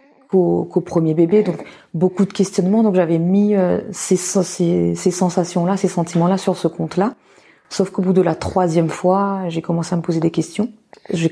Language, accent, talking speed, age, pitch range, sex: French, French, 190 wpm, 30-49, 165-185 Hz, female